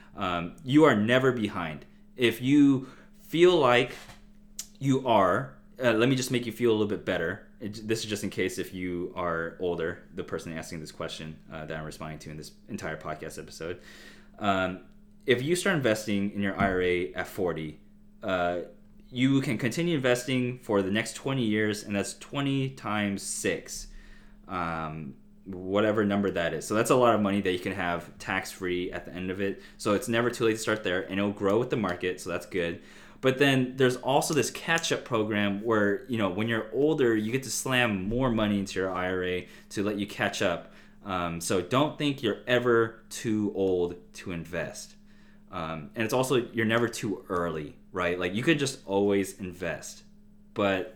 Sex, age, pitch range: male, 20-39, 95-130 Hz